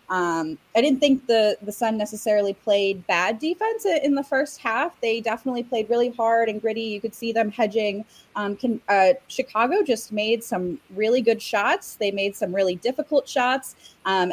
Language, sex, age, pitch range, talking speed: English, female, 20-39, 180-230 Hz, 185 wpm